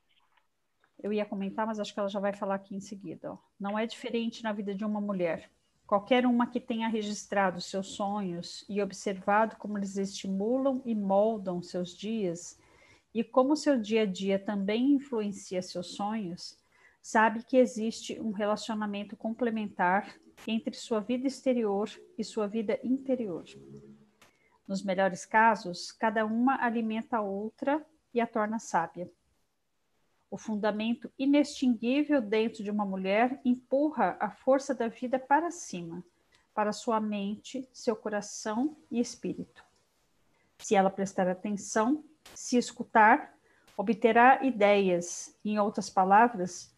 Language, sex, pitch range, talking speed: Portuguese, female, 195-240 Hz, 135 wpm